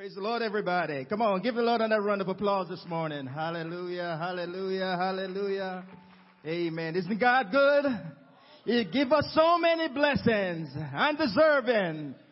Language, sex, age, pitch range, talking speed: English, male, 30-49, 175-205 Hz, 140 wpm